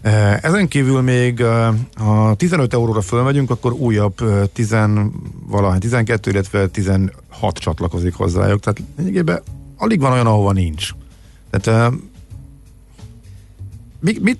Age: 50-69